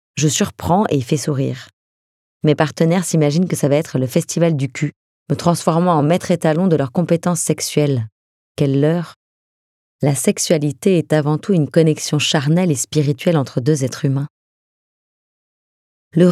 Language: French